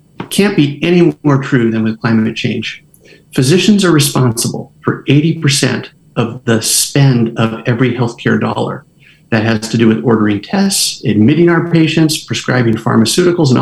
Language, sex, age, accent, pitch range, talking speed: English, male, 50-69, American, 115-150 Hz, 155 wpm